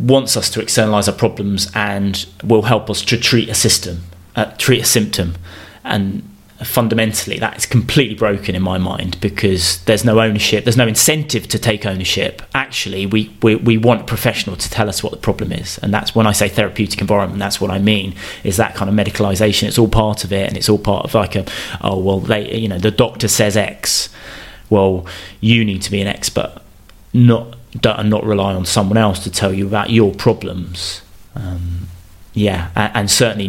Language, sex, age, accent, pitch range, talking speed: English, male, 30-49, British, 100-115 Hz, 200 wpm